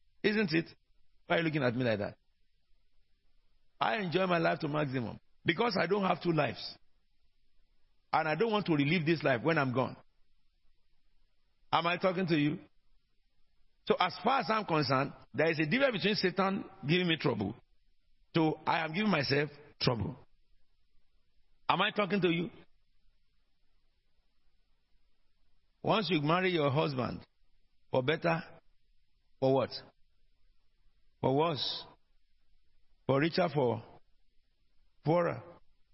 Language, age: English, 50-69